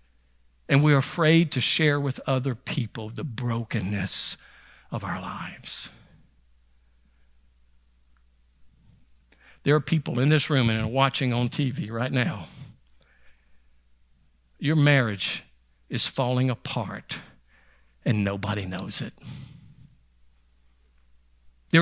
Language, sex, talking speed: English, male, 95 wpm